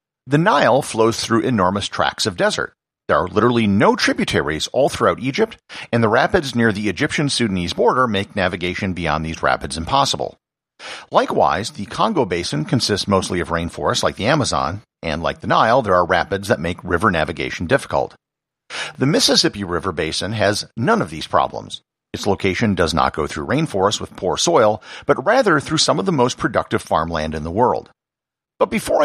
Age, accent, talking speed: 50-69, American, 175 wpm